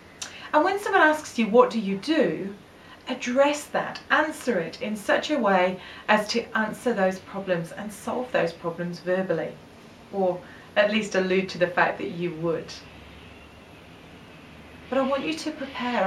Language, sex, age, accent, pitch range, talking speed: English, female, 30-49, British, 180-245 Hz, 160 wpm